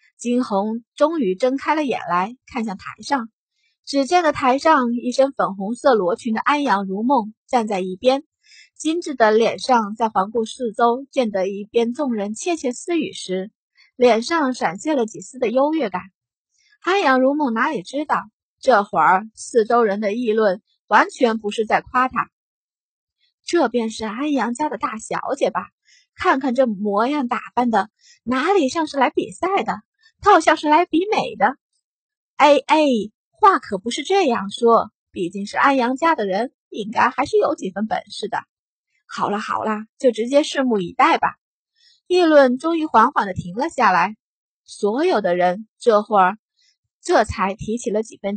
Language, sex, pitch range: Chinese, female, 215-300 Hz